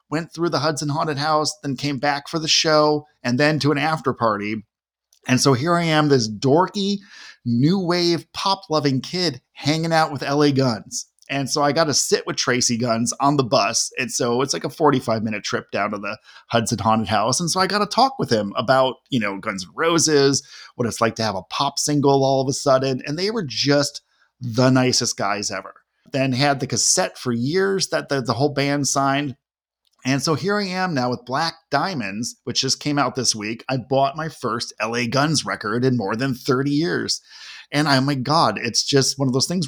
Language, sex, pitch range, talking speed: English, male, 125-160 Hz, 220 wpm